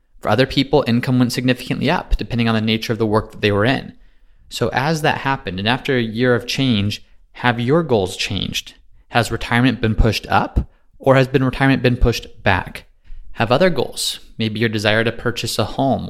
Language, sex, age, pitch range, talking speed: English, male, 30-49, 110-140 Hz, 200 wpm